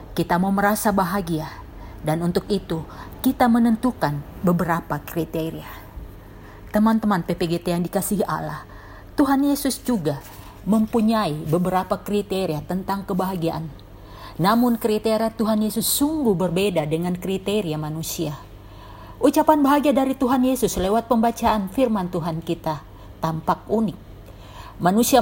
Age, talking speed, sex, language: 50-69, 110 wpm, female, Indonesian